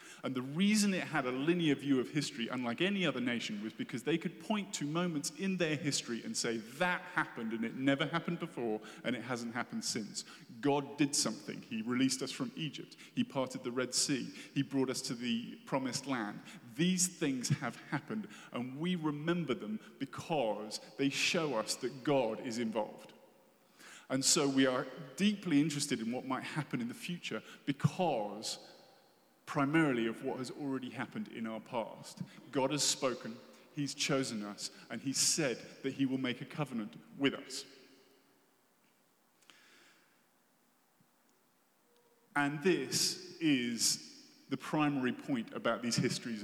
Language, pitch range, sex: English, 125-170 Hz, male